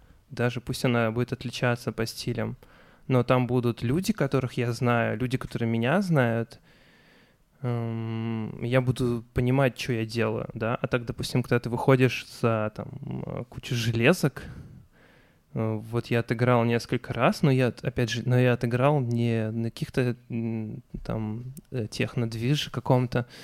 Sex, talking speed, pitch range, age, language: male, 135 wpm, 115-130 Hz, 20-39, Ukrainian